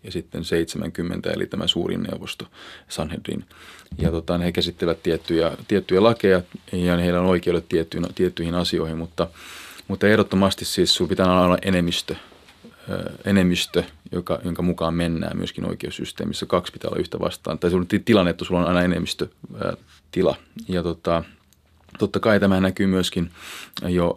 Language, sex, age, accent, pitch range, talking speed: Finnish, male, 30-49, native, 85-100 Hz, 150 wpm